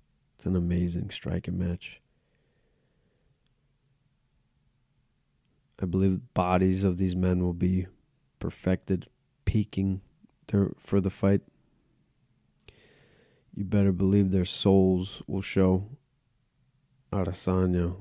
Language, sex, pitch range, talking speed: English, male, 90-135 Hz, 85 wpm